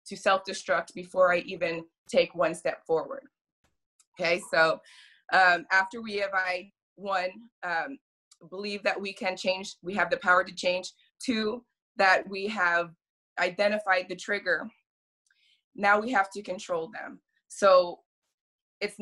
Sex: female